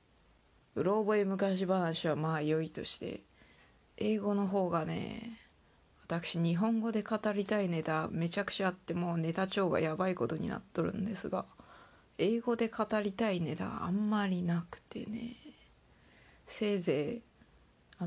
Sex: female